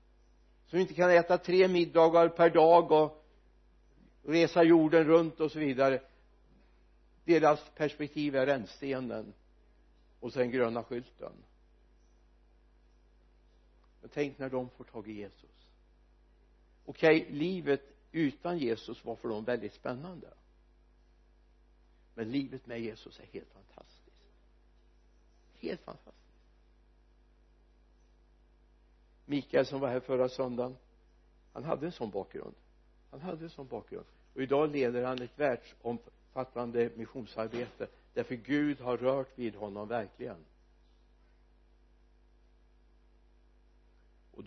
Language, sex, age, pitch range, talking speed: Swedish, male, 60-79, 85-140 Hz, 105 wpm